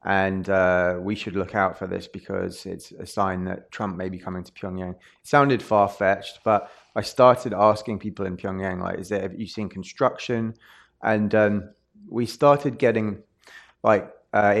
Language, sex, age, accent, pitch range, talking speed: English, male, 20-39, British, 95-110 Hz, 170 wpm